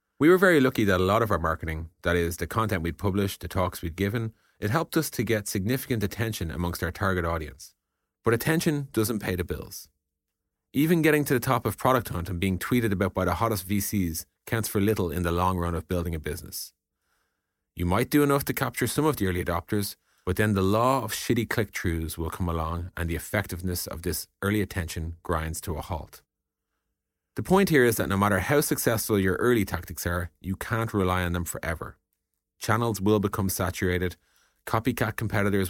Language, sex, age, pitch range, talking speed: English, male, 30-49, 85-110 Hz, 205 wpm